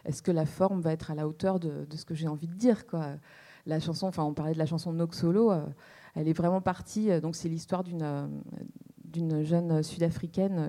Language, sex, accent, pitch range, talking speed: French, female, French, 160-200 Hz, 235 wpm